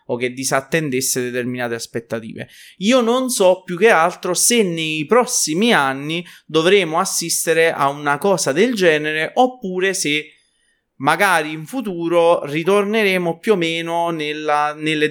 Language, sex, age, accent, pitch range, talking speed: Italian, male, 20-39, native, 130-170 Hz, 130 wpm